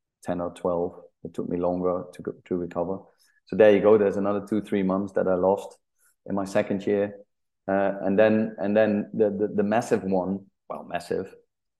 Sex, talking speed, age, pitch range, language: male, 195 wpm, 30-49, 90-100 Hz, English